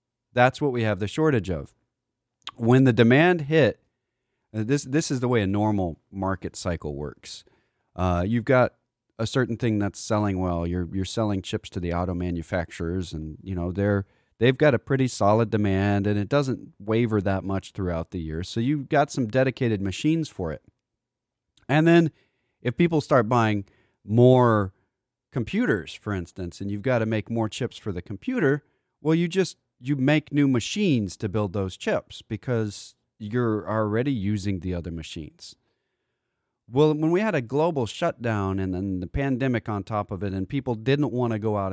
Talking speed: 180 wpm